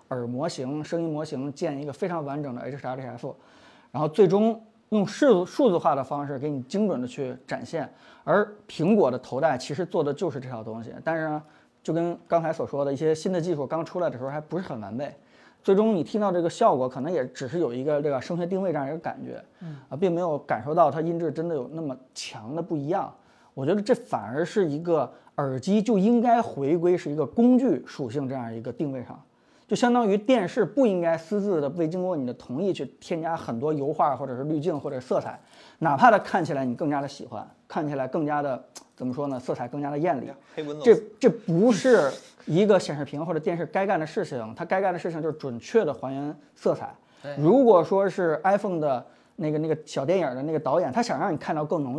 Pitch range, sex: 140-190 Hz, male